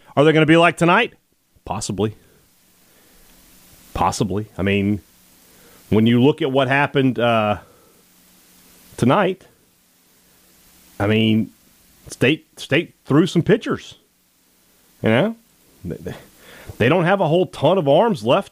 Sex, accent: male, American